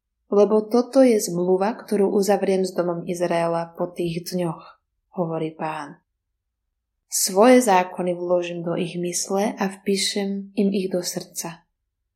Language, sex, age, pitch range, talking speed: Slovak, female, 20-39, 155-200 Hz, 130 wpm